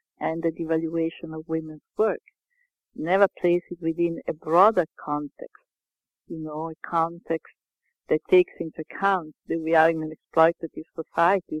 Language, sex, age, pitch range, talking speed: English, female, 50-69, 160-180 Hz, 145 wpm